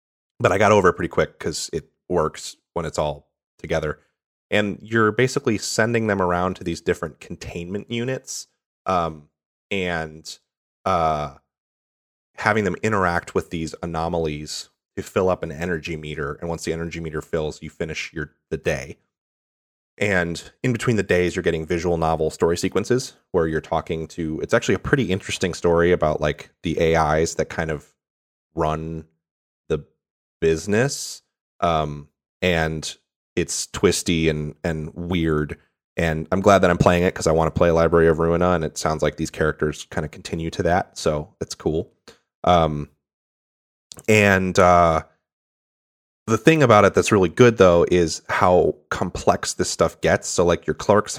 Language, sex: English, male